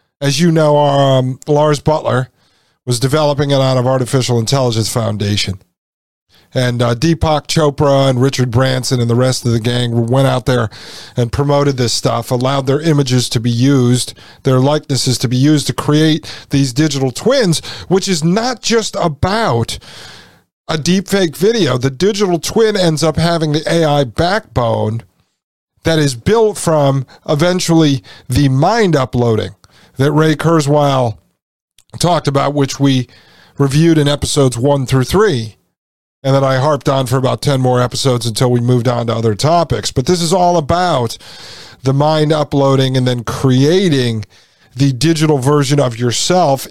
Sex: male